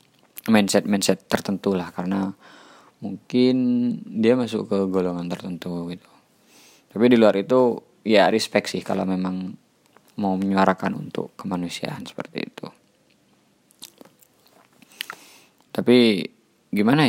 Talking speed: 100 wpm